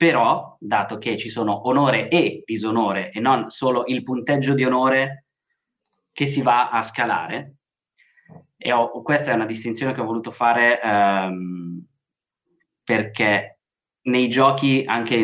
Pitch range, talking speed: 110-140 Hz, 135 wpm